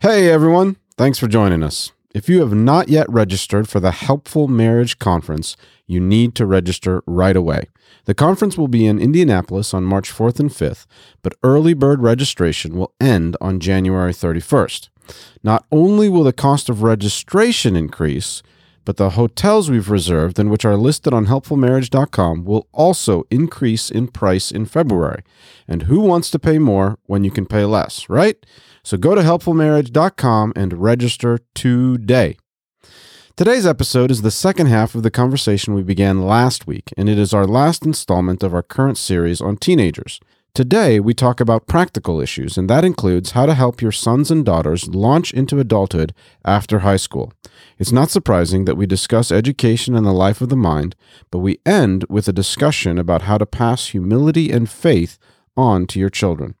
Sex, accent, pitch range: male, American, 95-135 Hz